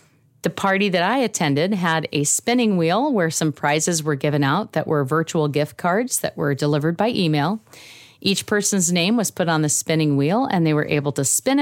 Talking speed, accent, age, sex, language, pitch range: 205 wpm, American, 40-59, female, English, 150-205 Hz